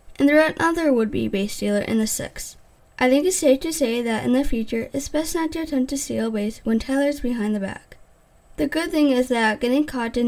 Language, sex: English, female